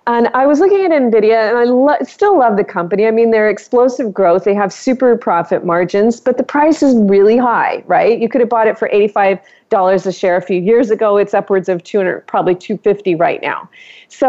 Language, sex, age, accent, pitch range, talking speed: English, female, 40-59, American, 185-235 Hz, 220 wpm